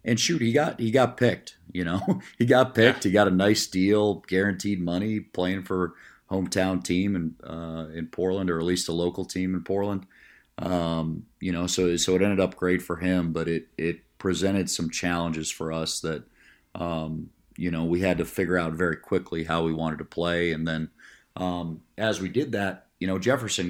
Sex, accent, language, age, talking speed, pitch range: male, American, English, 40-59, 205 wpm, 85-95 Hz